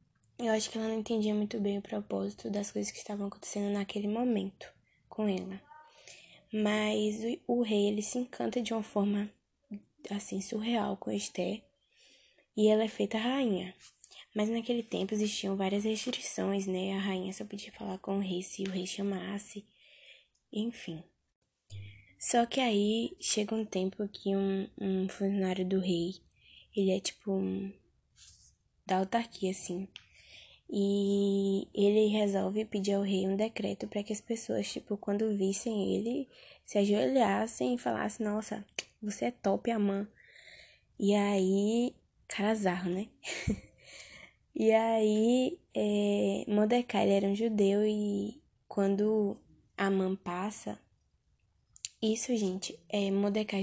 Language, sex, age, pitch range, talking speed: Portuguese, female, 10-29, 195-220 Hz, 135 wpm